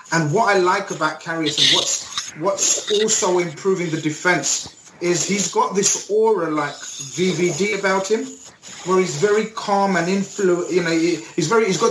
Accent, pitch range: British, 160-195 Hz